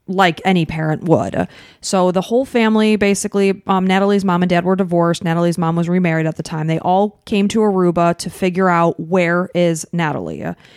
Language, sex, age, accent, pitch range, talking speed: English, female, 20-39, American, 175-205 Hz, 190 wpm